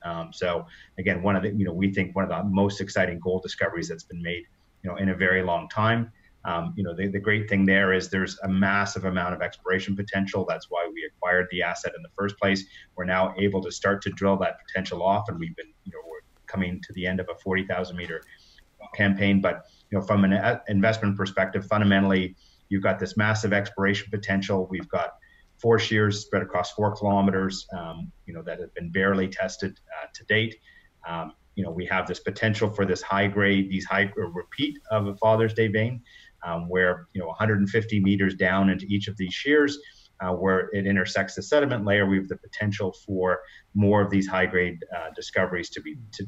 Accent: American